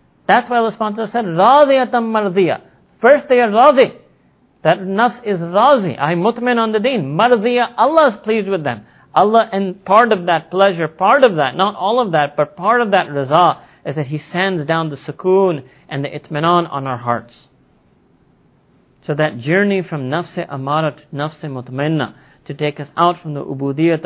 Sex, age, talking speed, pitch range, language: male, 40-59, 180 wpm, 125-185 Hz, English